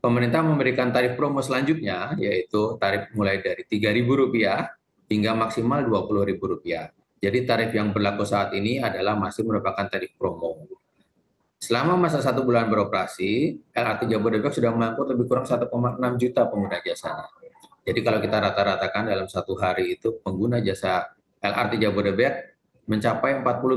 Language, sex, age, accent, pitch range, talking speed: Indonesian, male, 30-49, native, 100-125 Hz, 130 wpm